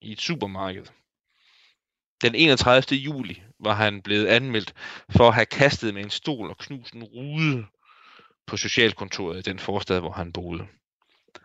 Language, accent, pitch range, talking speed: Danish, native, 105-125 Hz, 150 wpm